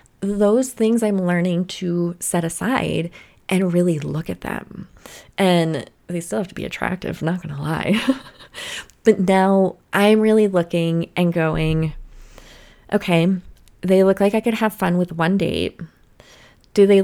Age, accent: 20-39, American